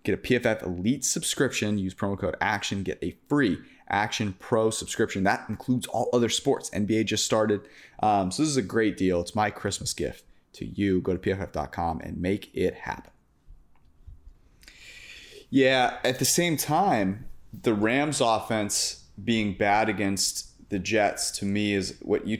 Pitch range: 90-110 Hz